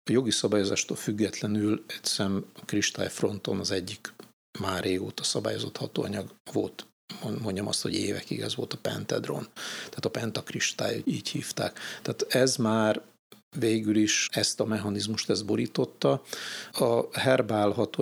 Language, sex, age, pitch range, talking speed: Hungarian, male, 50-69, 105-115 Hz, 130 wpm